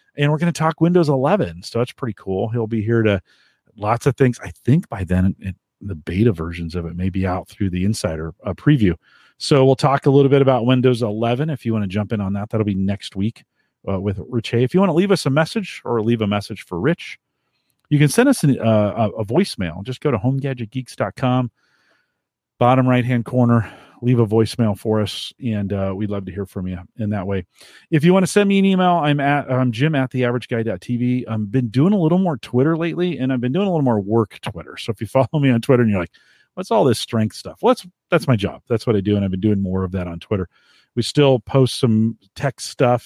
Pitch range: 100-135 Hz